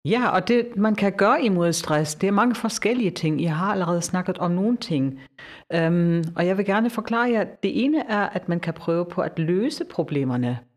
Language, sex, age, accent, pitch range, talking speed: Danish, female, 50-69, German, 145-180 Hz, 210 wpm